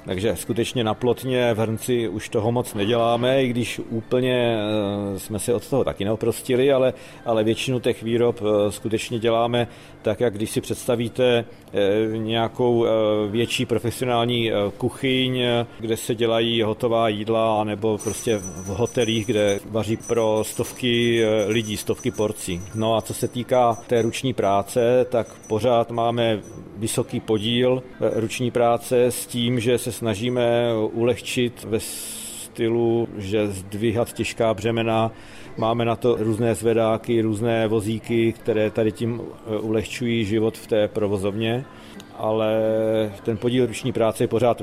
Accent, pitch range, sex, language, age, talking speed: native, 110-120 Hz, male, Czech, 40-59, 135 wpm